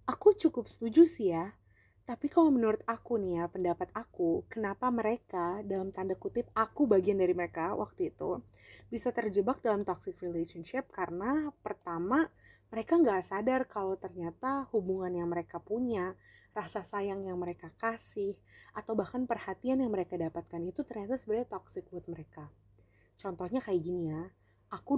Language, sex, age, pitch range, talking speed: Indonesian, female, 30-49, 175-250 Hz, 150 wpm